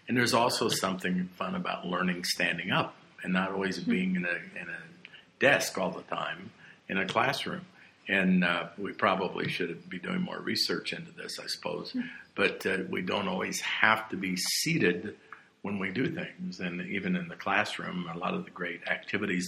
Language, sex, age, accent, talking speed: English, male, 50-69, American, 185 wpm